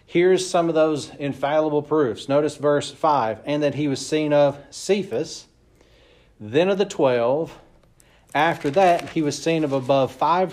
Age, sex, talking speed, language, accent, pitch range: 40-59, male, 160 wpm, English, American, 130-165 Hz